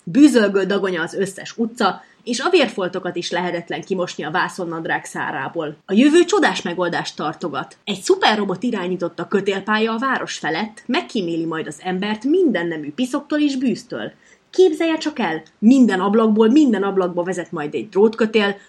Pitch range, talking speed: 175-235 Hz, 150 wpm